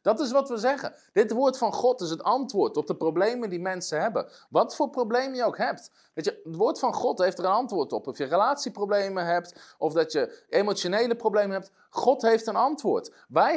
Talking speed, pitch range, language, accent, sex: 220 wpm, 190-265 Hz, Dutch, Dutch, male